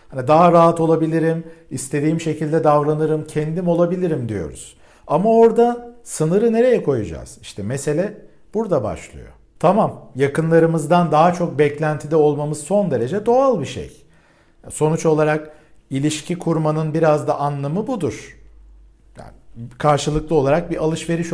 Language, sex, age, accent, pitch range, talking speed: Turkish, male, 50-69, native, 140-195 Hz, 120 wpm